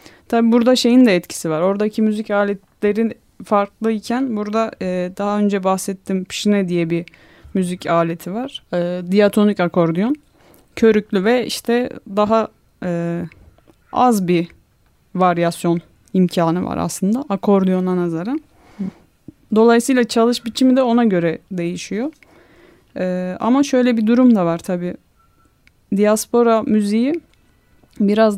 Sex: female